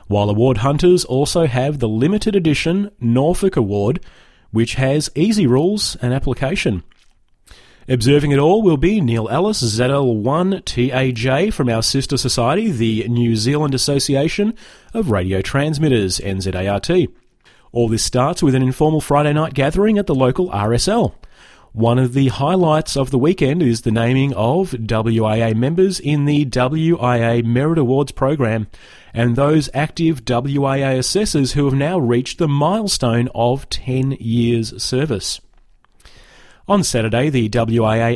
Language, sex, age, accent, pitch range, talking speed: English, male, 30-49, Australian, 120-155 Hz, 135 wpm